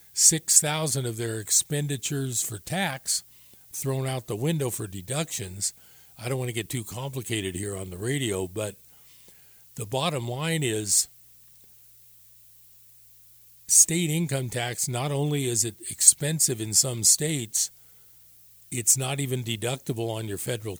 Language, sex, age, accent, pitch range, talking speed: English, male, 50-69, American, 95-130 Hz, 135 wpm